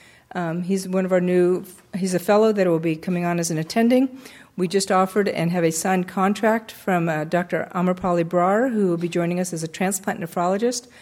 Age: 50-69